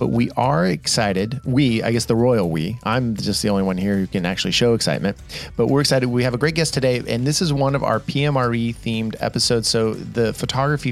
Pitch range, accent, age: 110-135 Hz, American, 30-49